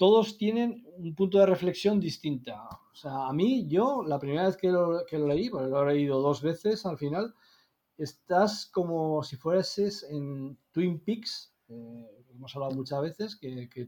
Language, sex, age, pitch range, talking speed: Spanish, male, 40-59, 135-190 Hz, 180 wpm